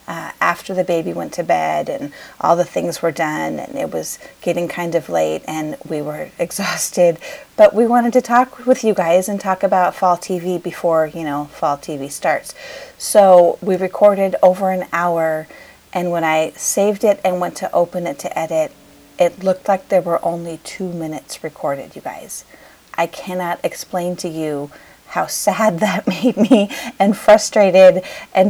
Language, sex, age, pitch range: English, female, 30-49, 165-210 Hz